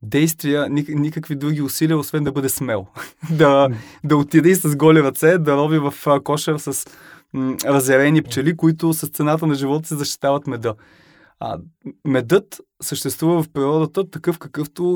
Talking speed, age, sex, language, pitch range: 150 wpm, 20-39, male, Bulgarian, 125-150 Hz